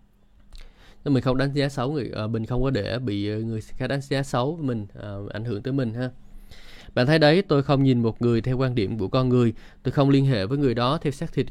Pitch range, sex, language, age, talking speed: 115-140 Hz, male, Vietnamese, 20-39, 245 wpm